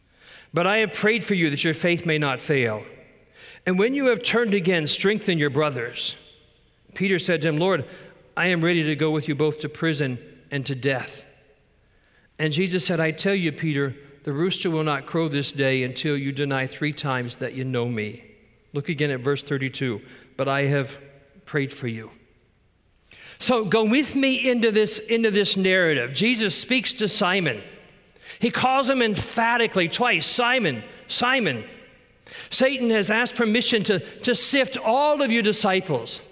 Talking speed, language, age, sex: 170 wpm, English, 40-59, male